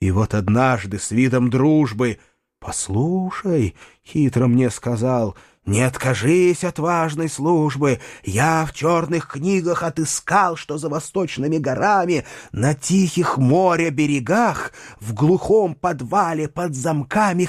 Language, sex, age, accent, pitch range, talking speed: Russian, male, 30-49, native, 115-160 Hz, 110 wpm